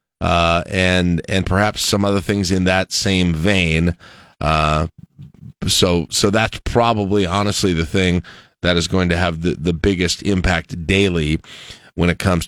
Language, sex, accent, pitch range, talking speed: English, male, American, 90-110 Hz, 155 wpm